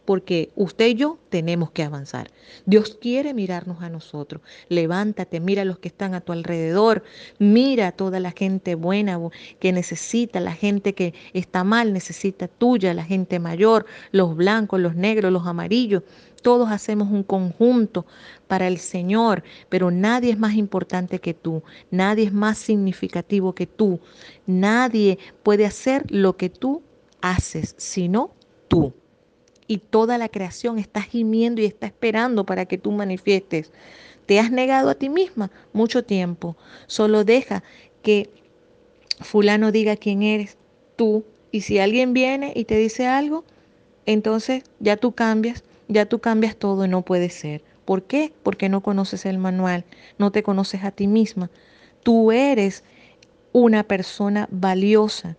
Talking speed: 155 wpm